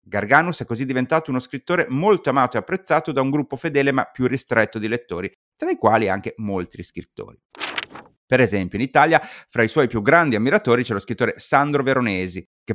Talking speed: 195 wpm